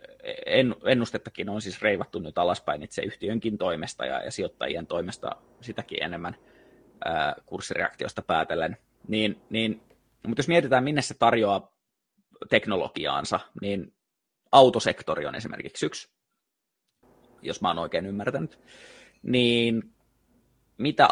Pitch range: 100-125 Hz